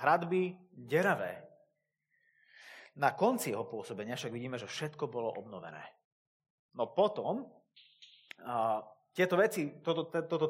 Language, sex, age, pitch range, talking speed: Slovak, male, 30-49, 130-175 Hz, 110 wpm